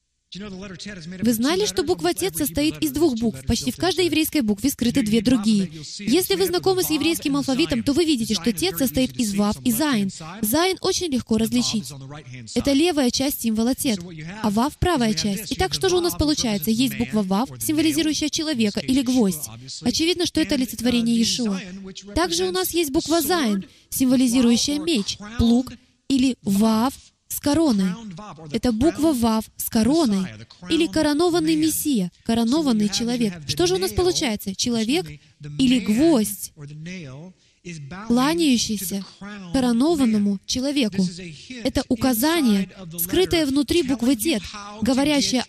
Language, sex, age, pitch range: Russian, female, 20-39, 205-305 Hz